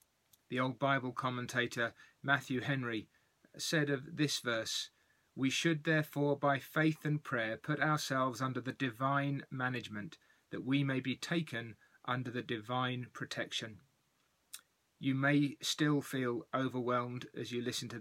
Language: English